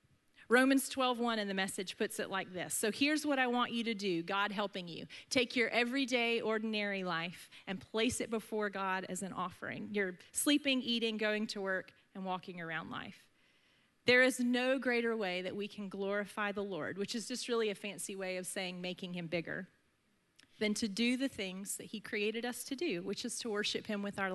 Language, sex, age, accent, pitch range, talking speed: English, female, 30-49, American, 195-235 Hz, 210 wpm